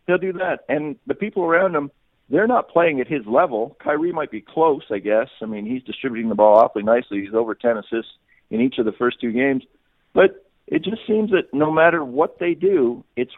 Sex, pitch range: male, 105-155 Hz